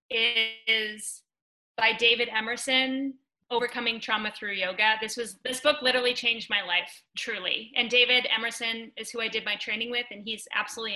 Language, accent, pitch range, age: English, American, 215-250 Hz, 20-39